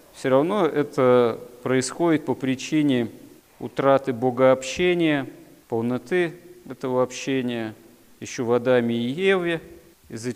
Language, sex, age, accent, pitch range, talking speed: Russian, male, 40-59, native, 120-145 Hz, 95 wpm